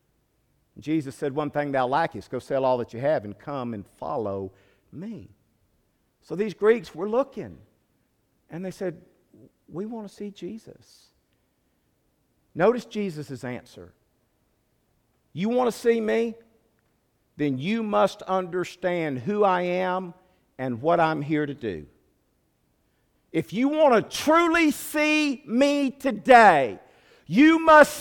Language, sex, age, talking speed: English, male, 50-69, 130 wpm